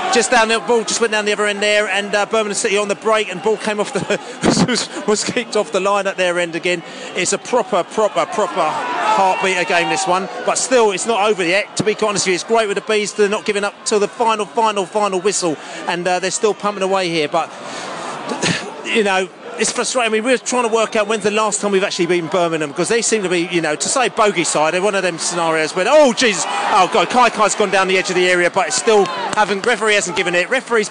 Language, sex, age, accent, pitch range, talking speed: English, male, 30-49, British, 180-215 Hz, 260 wpm